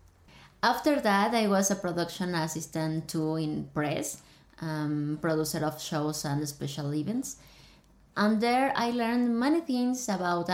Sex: female